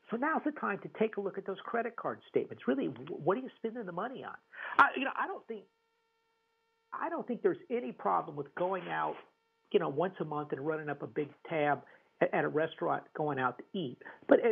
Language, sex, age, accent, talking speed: English, male, 50-69, American, 225 wpm